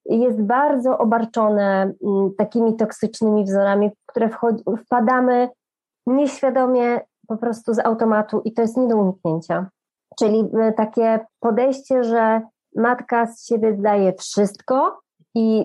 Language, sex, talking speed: Polish, female, 115 wpm